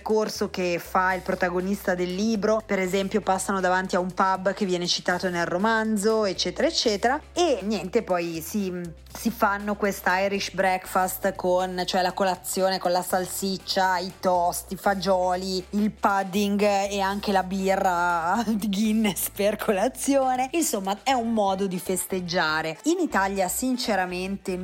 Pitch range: 180-220 Hz